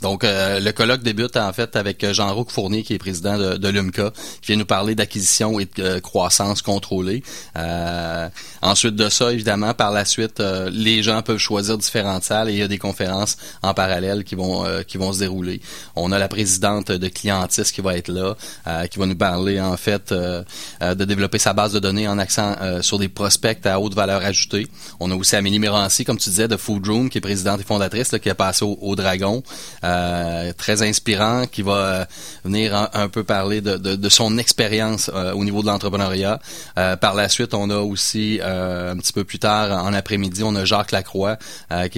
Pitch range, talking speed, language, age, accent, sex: 95-110 Hz, 220 wpm, French, 30-49, Canadian, male